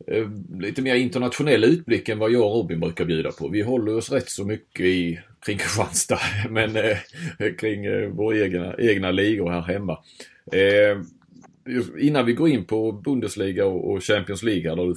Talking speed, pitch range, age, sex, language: 170 wpm, 90-115 Hz, 30-49, male, Swedish